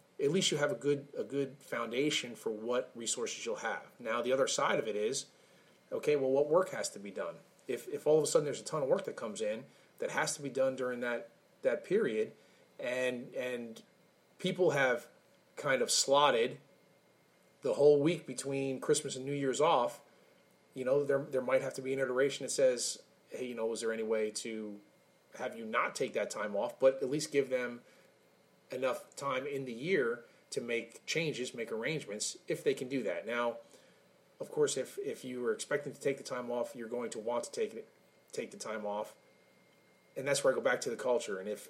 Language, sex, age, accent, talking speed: English, male, 30-49, American, 215 wpm